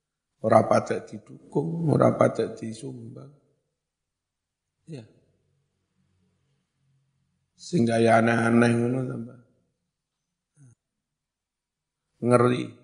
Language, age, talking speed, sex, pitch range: Indonesian, 50-69, 55 wpm, male, 115-135 Hz